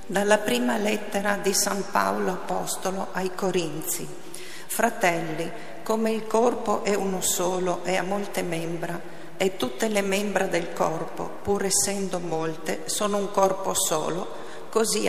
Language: Italian